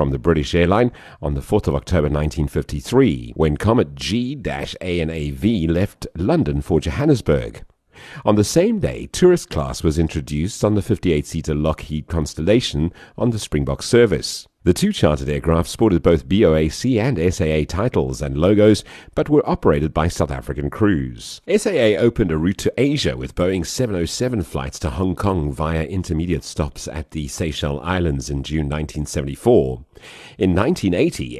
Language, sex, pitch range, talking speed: English, male, 75-95 Hz, 150 wpm